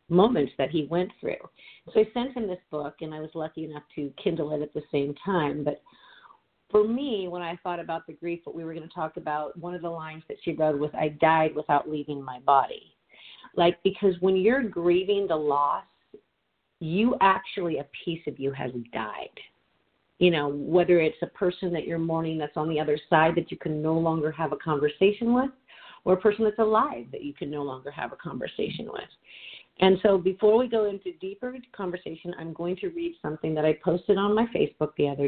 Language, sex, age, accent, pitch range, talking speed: English, female, 40-59, American, 150-185 Hz, 215 wpm